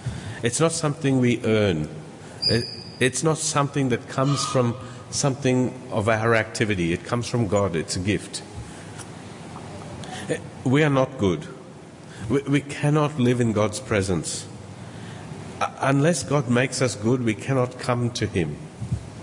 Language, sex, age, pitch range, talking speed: English, male, 50-69, 105-130 Hz, 130 wpm